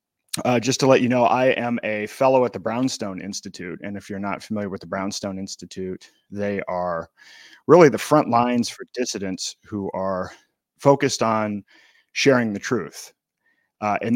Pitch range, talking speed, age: 95-115 Hz, 170 wpm, 30-49